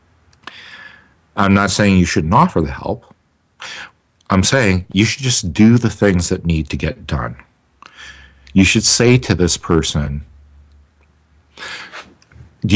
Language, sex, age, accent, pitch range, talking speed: English, male, 50-69, American, 75-95 Hz, 130 wpm